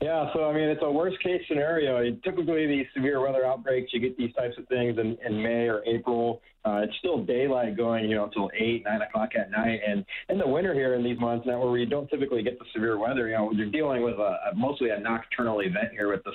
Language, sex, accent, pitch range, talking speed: English, male, American, 110-130 Hz, 255 wpm